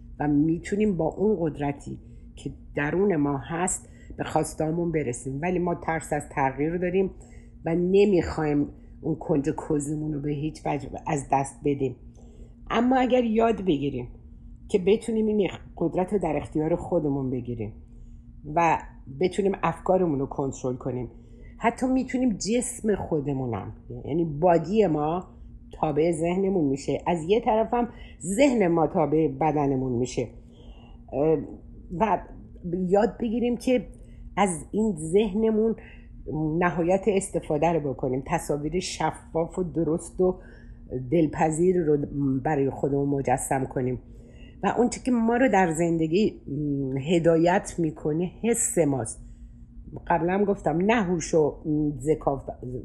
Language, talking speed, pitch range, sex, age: Persian, 125 wpm, 140-185 Hz, female, 50-69